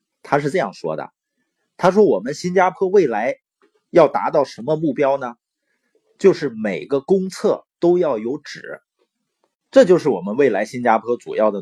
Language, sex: Chinese, male